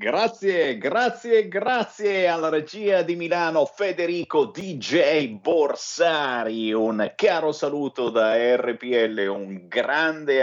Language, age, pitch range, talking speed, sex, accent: Italian, 50-69, 125-195 Hz, 100 wpm, male, native